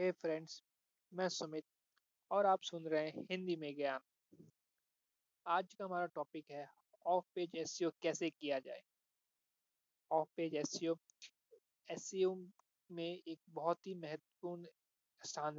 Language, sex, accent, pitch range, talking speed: Hindi, male, native, 155-190 Hz, 135 wpm